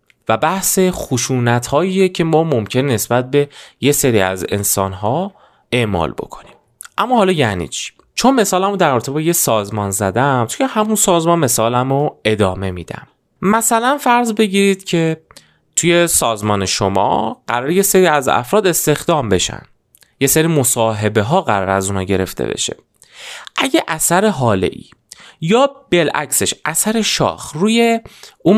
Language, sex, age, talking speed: Persian, male, 30-49, 135 wpm